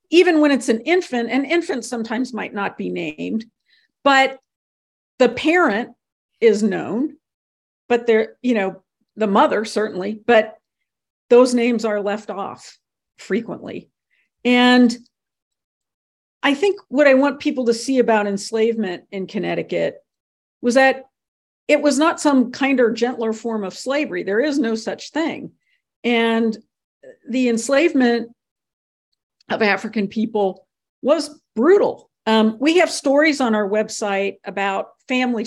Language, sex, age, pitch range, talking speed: English, female, 50-69, 210-275 Hz, 130 wpm